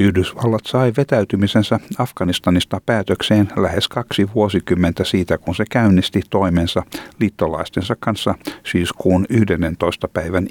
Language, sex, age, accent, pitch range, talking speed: Finnish, male, 60-79, native, 90-110 Hz, 105 wpm